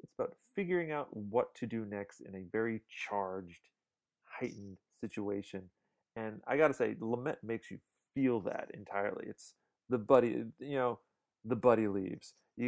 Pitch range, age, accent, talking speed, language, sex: 105-145 Hz, 30-49, American, 160 wpm, English, male